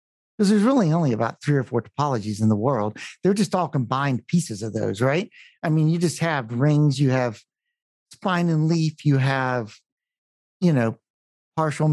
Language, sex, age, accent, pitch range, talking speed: English, male, 50-69, American, 130-185 Hz, 180 wpm